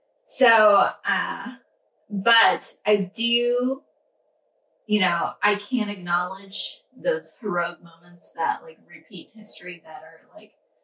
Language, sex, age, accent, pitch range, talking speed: English, female, 20-39, American, 180-240 Hz, 110 wpm